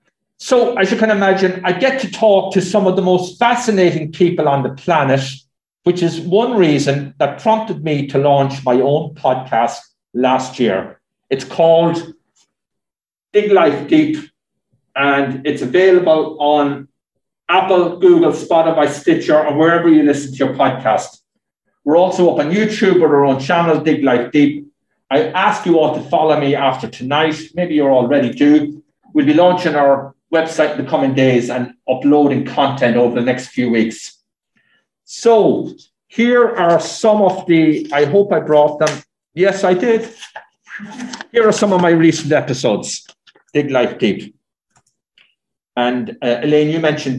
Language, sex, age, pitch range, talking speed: English, male, 60-79, 135-185 Hz, 160 wpm